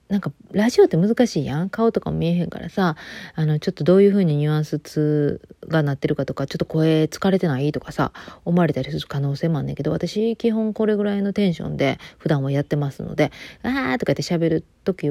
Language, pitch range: Japanese, 150-195 Hz